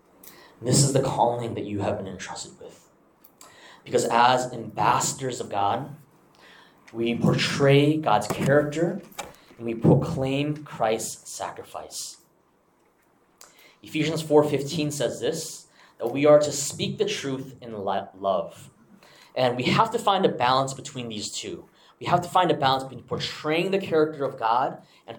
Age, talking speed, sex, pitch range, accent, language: 20-39, 145 wpm, male, 120-160 Hz, American, English